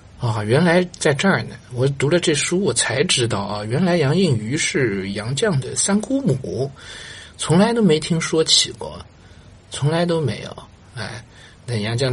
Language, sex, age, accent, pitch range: Chinese, male, 50-69, native, 100-135 Hz